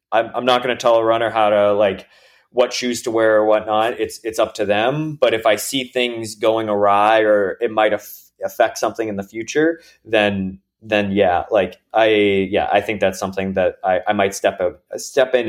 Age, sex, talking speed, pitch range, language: 20-39, male, 215 wpm, 105-135 Hz, English